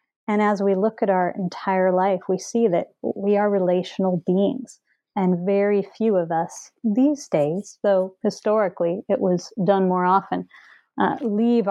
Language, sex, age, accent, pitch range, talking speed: English, female, 30-49, American, 185-225 Hz, 160 wpm